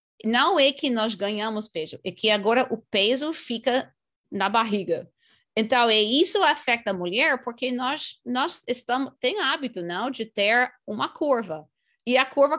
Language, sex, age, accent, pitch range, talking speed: English, female, 30-49, Brazilian, 185-255 Hz, 165 wpm